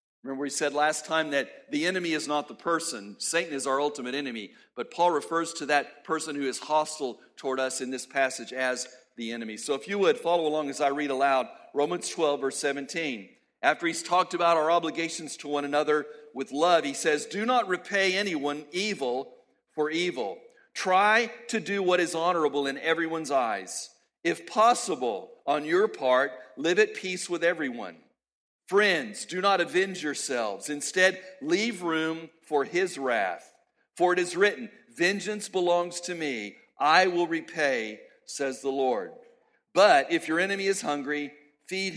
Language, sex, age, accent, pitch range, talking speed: English, male, 50-69, American, 145-195 Hz, 170 wpm